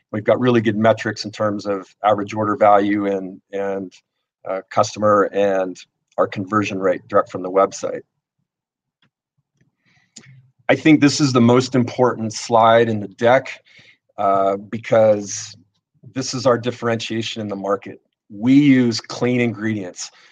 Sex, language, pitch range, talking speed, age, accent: male, English, 105-120 Hz, 140 wpm, 40-59, American